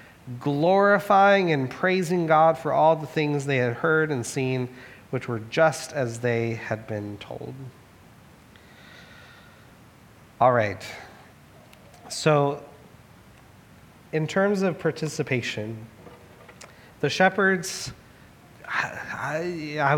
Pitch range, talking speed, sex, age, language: 125-155 Hz, 95 wpm, male, 30-49, English